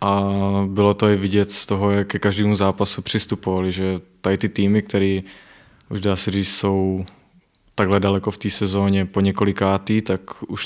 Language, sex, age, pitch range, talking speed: Czech, male, 20-39, 95-105 Hz, 175 wpm